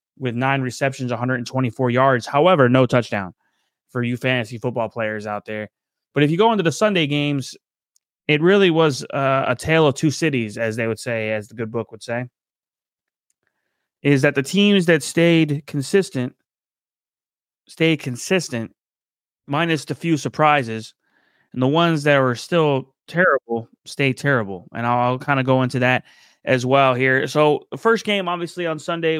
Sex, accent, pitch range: male, American, 120-155 Hz